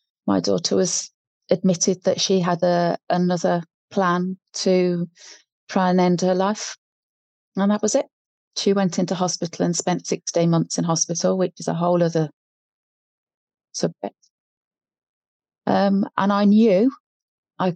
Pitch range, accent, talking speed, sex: 170-195 Hz, British, 135 wpm, female